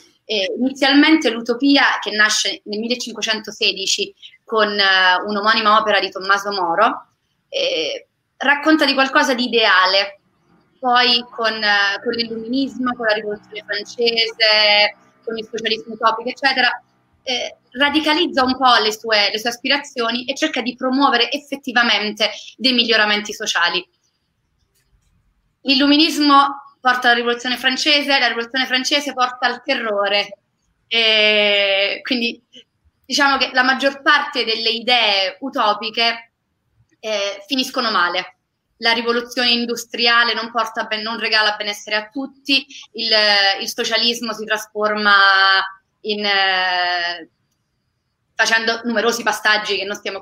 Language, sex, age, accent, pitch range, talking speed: Italian, female, 30-49, native, 205-255 Hz, 120 wpm